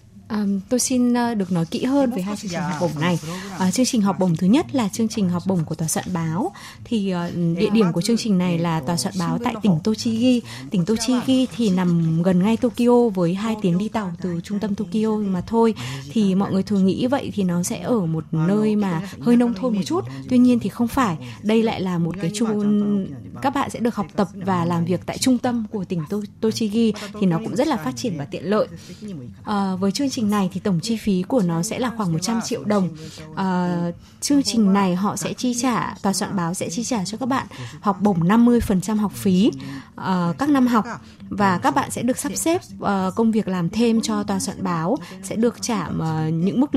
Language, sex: Vietnamese, female